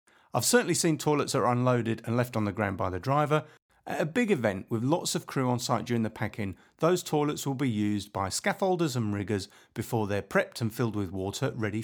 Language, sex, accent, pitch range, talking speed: English, male, British, 105-150 Hz, 230 wpm